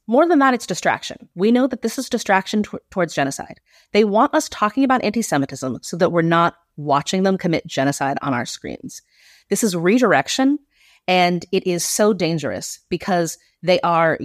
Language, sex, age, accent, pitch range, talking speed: English, female, 30-49, American, 175-250 Hz, 175 wpm